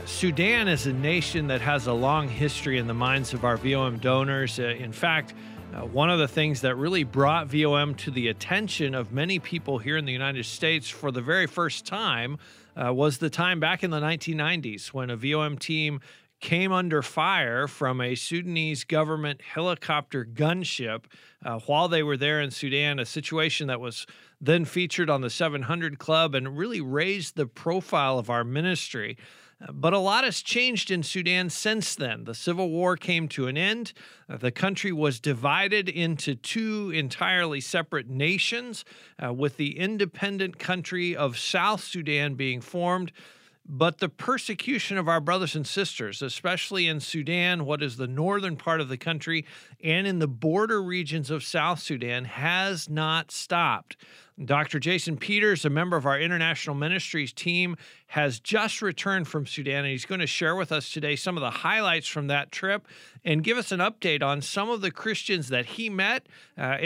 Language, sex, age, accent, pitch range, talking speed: English, male, 40-59, American, 140-180 Hz, 180 wpm